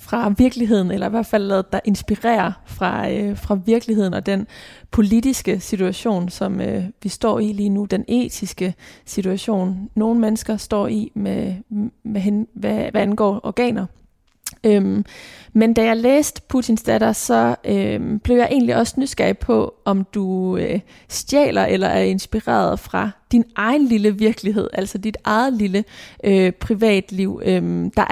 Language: Danish